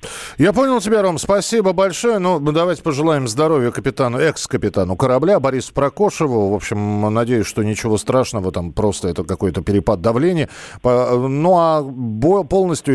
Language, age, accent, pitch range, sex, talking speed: Russian, 40-59, native, 110-160 Hz, male, 140 wpm